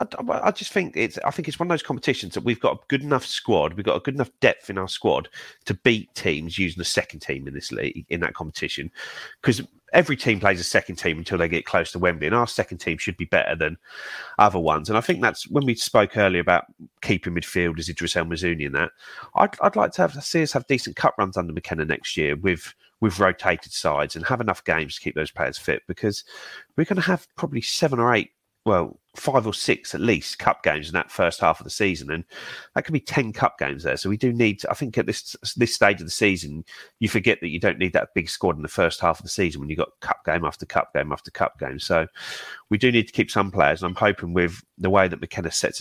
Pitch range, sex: 85-115 Hz, male